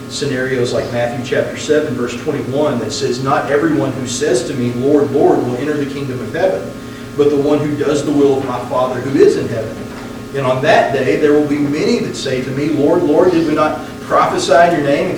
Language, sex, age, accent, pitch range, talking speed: English, male, 40-59, American, 135-175 Hz, 235 wpm